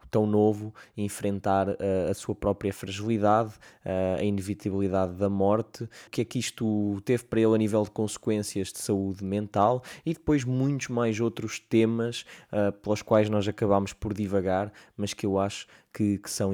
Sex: male